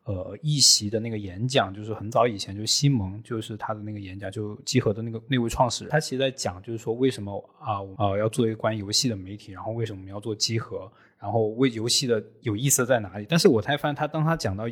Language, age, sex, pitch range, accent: Chinese, 20-39, male, 105-130 Hz, native